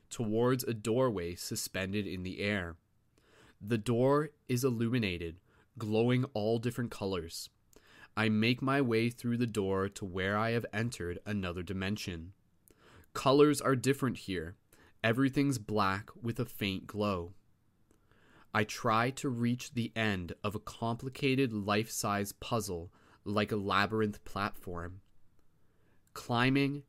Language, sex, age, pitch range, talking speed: English, male, 20-39, 100-120 Hz, 125 wpm